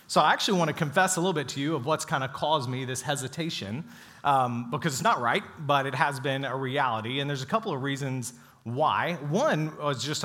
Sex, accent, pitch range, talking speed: male, American, 130-165 Hz, 235 wpm